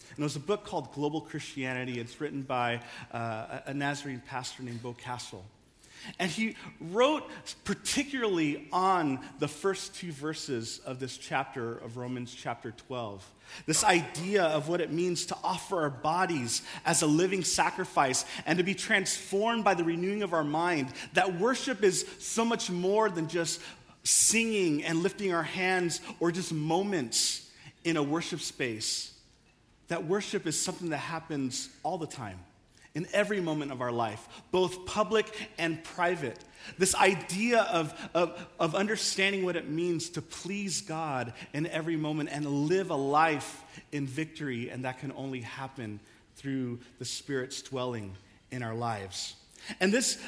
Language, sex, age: English, male, 40-59